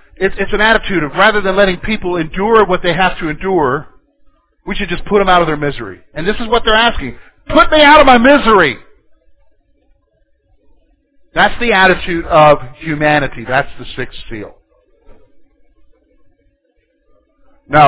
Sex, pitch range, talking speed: male, 170-270 Hz, 150 wpm